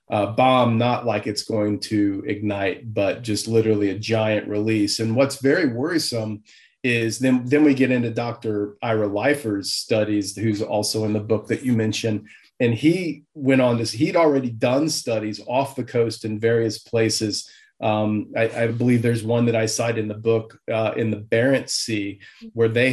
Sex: male